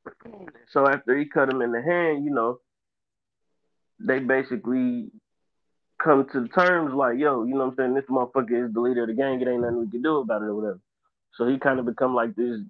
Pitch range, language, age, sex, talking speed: 115-130 Hz, English, 20-39, male, 220 wpm